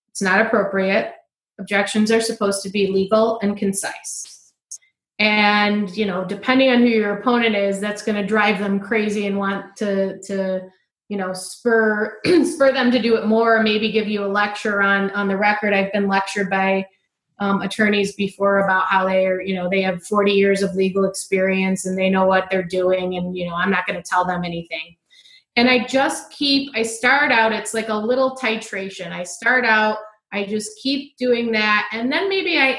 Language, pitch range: English, 195-230 Hz